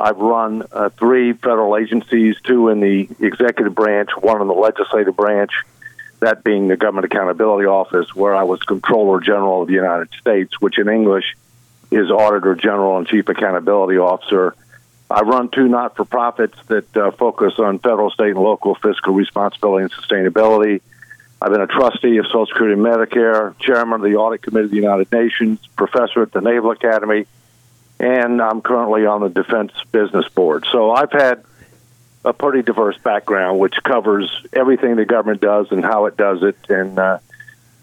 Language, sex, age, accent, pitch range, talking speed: English, male, 50-69, American, 100-120 Hz, 170 wpm